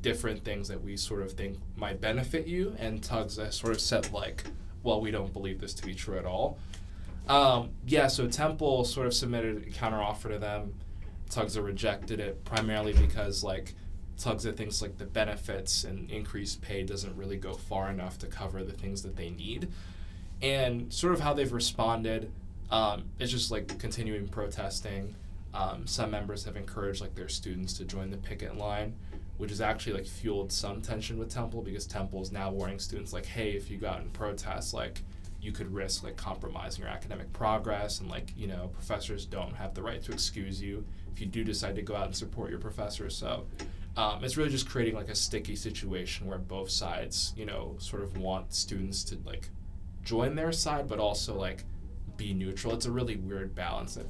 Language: English